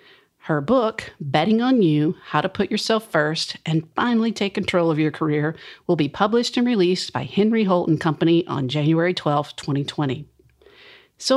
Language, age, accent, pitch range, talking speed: English, 50-69, American, 150-210 Hz, 170 wpm